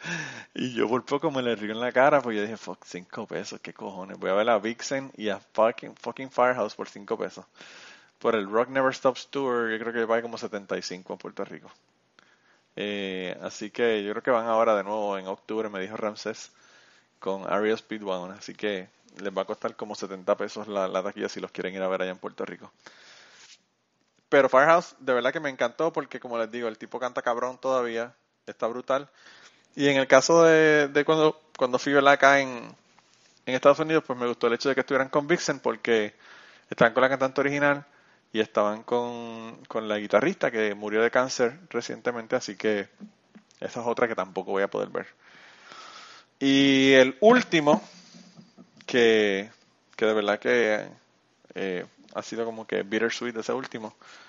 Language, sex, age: Spanish, male, 20-39